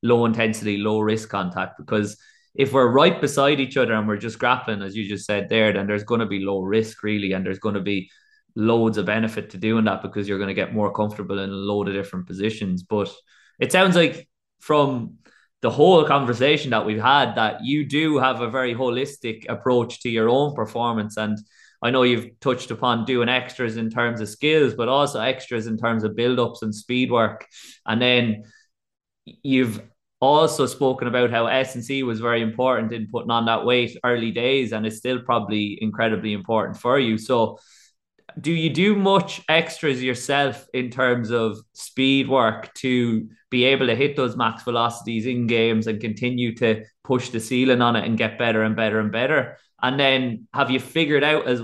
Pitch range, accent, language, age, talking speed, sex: 110-130 Hz, Irish, English, 20-39, 195 wpm, male